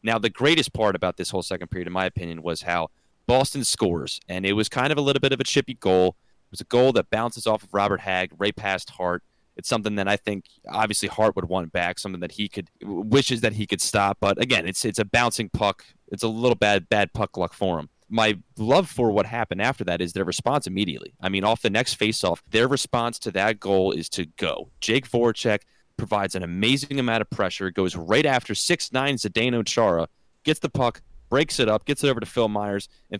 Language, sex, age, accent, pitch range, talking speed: English, male, 30-49, American, 95-120 Hz, 235 wpm